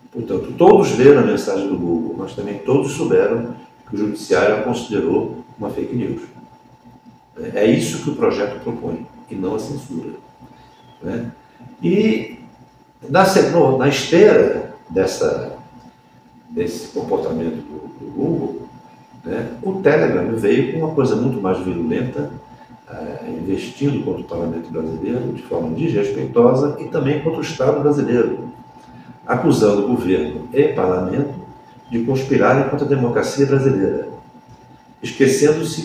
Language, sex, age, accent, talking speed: Portuguese, male, 60-79, Brazilian, 120 wpm